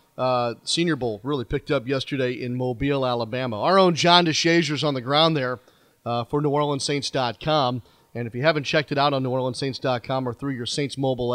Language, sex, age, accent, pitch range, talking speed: English, male, 40-59, American, 120-140 Hz, 190 wpm